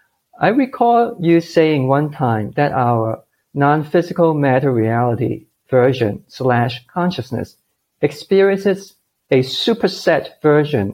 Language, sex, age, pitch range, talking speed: English, male, 50-69, 120-165 Hz, 100 wpm